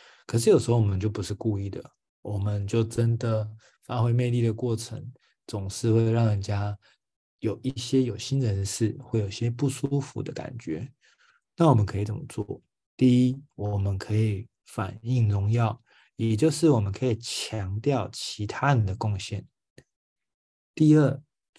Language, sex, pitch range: Chinese, male, 105-125 Hz